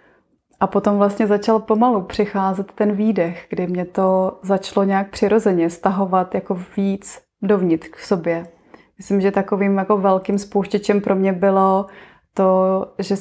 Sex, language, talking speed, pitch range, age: female, Czech, 140 wpm, 190-220 Hz, 20-39